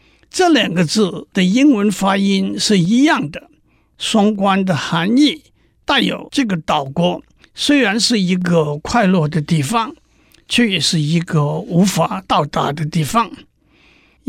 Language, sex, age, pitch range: Chinese, male, 60-79, 175-240 Hz